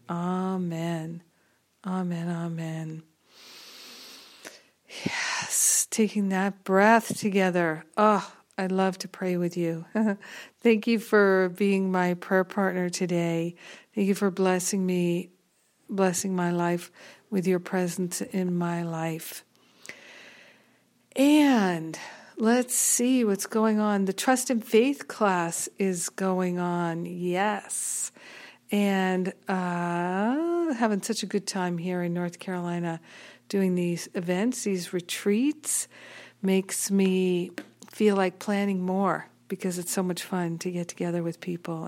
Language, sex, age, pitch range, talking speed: English, female, 50-69, 175-205 Hz, 120 wpm